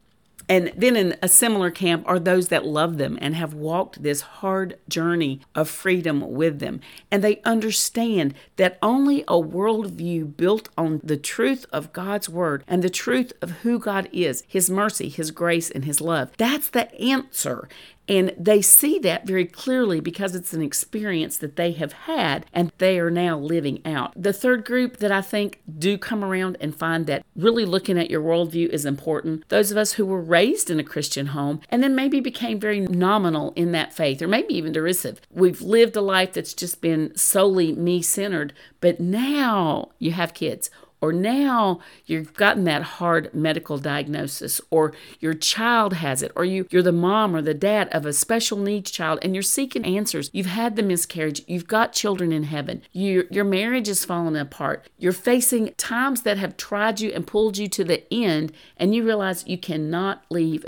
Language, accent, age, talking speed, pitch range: English, American, 50-69, 190 wpm, 160-210 Hz